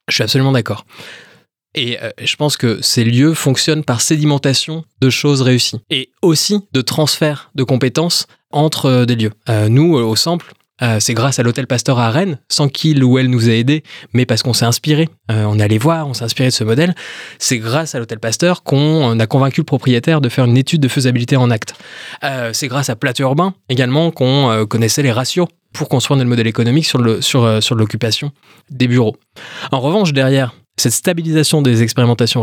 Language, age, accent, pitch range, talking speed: French, 20-39, French, 120-150 Hz, 210 wpm